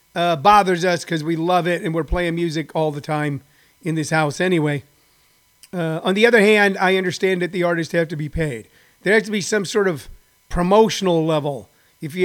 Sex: male